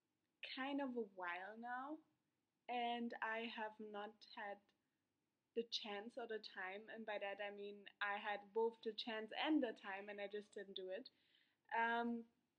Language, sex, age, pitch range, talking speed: English, female, 20-39, 200-230 Hz, 165 wpm